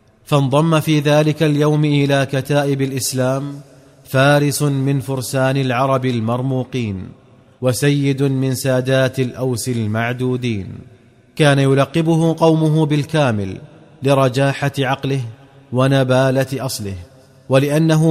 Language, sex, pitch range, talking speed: Arabic, male, 125-145 Hz, 85 wpm